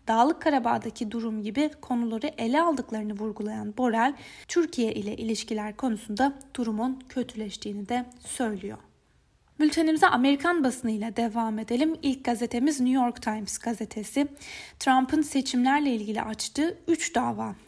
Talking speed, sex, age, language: 115 wpm, female, 10-29, Turkish